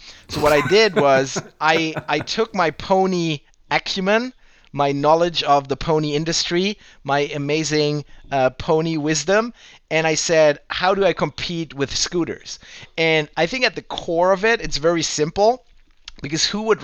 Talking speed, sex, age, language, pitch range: 160 wpm, male, 30-49, English, 140-175 Hz